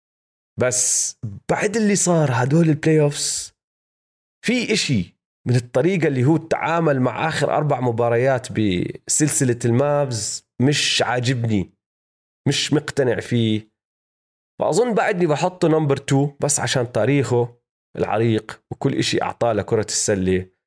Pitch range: 100-135 Hz